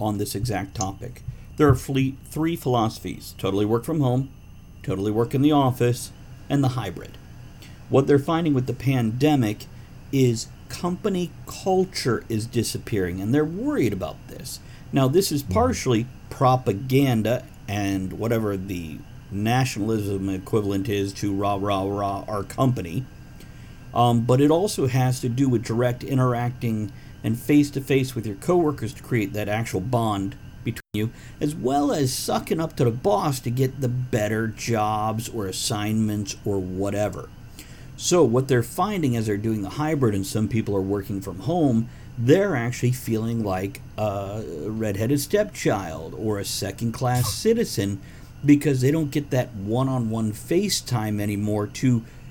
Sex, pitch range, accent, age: male, 105-135 Hz, American, 50-69